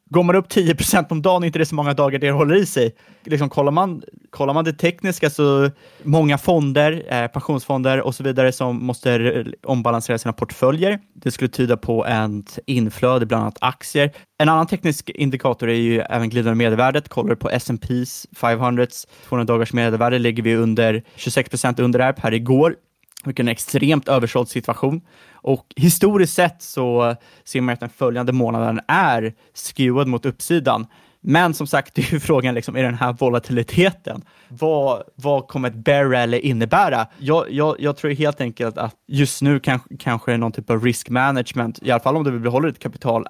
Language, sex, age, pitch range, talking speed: Swedish, male, 20-39, 120-150 Hz, 180 wpm